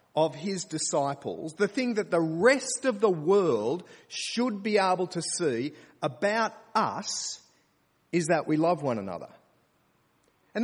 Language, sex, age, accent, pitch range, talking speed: English, male, 40-59, Australian, 155-230 Hz, 140 wpm